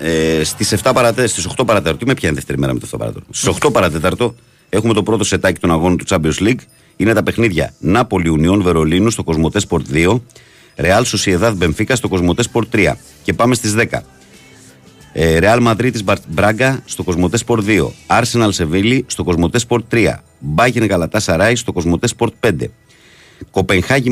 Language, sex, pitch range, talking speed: Greek, male, 85-115 Hz, 150 wpm